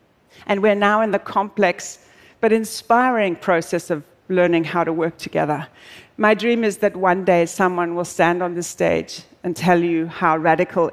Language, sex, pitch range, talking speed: Arabic, female, 165-195 Hz, 175 wpm